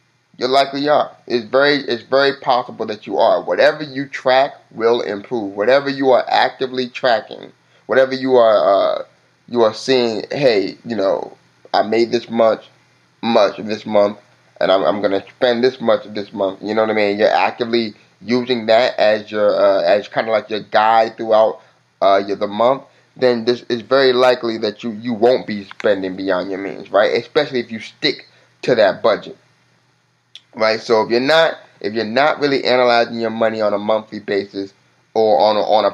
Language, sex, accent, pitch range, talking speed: English, male, American, 105-125 Hz, 190 wpm